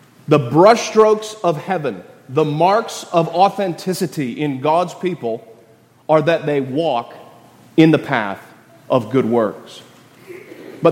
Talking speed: 120 wpm